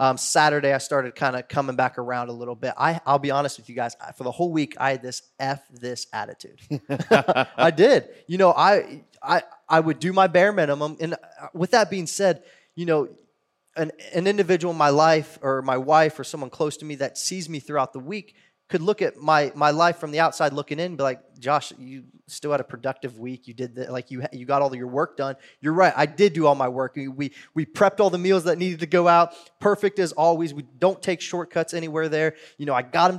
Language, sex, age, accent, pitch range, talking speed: English, male, 20-39, American, 135-170 Hz, 250 wpm